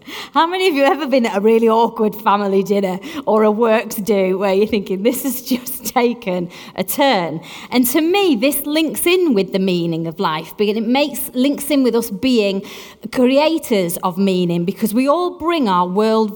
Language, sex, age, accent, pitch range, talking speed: English, female, 30-49, British, 200-270 Hz, 200 wpm